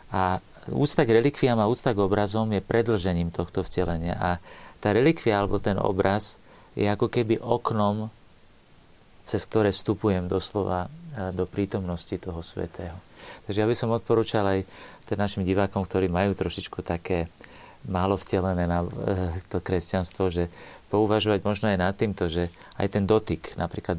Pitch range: 90-105 Hz